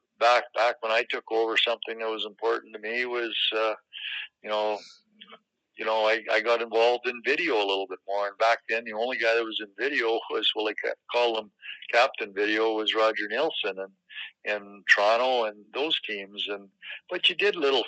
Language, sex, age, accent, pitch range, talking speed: English, male, 60-79, American, 105-115 Hz, 200 wpm